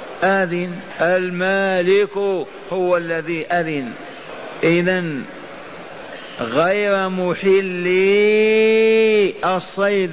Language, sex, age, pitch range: Arabic, male, 50-69, 155-185 Hz